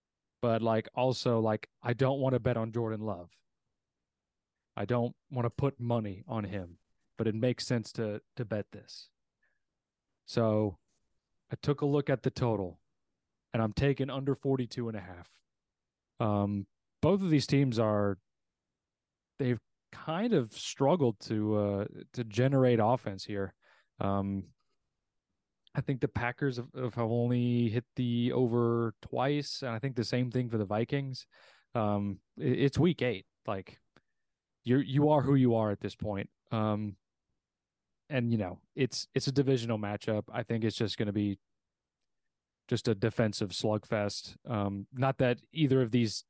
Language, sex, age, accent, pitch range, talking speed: English, male, 30-49, American, 105-130 Hz, 155 wpm